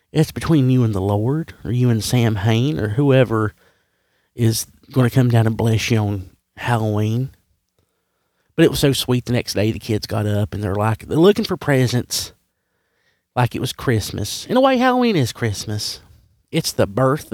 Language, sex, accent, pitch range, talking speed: English, male, American, 100-130 Hz, 190 wpm